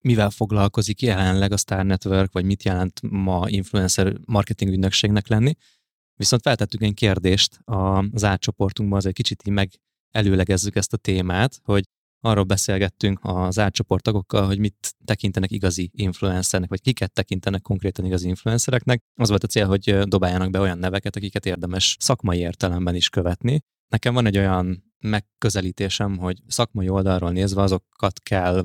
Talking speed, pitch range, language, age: 150 wpm, 95-110 Hz, Hungarian, 20-39